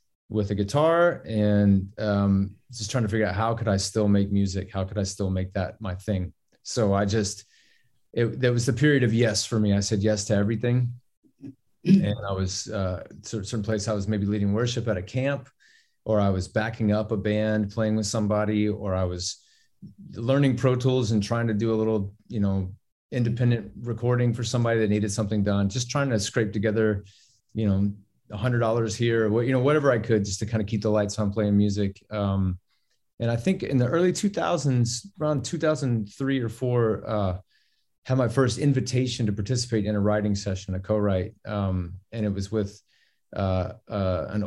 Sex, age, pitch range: male, 30-49, 100-120 Hz